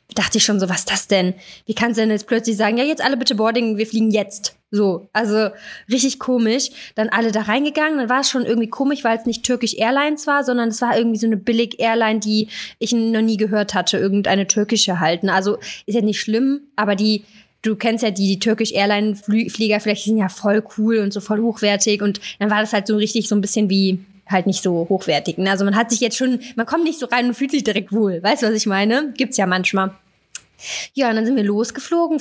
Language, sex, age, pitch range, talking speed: German, female, 20-39, 205-235 Hz, 235 wpm